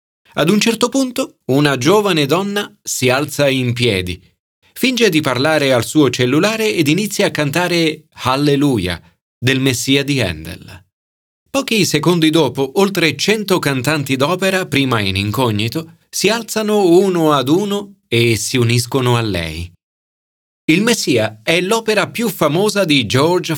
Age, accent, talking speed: 40-59, native, 135 wpm